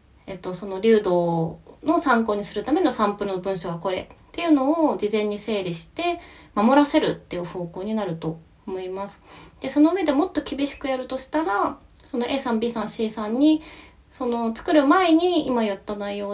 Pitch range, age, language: 195-300 Hz, 20-39, Japanese